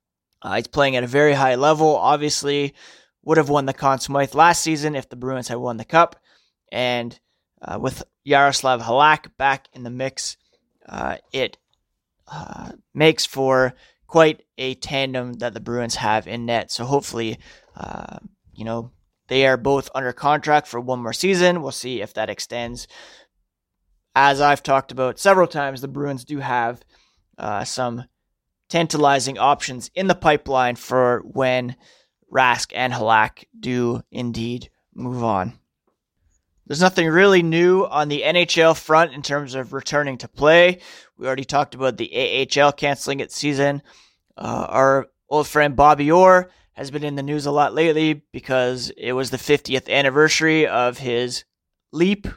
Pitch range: 125-150 Hz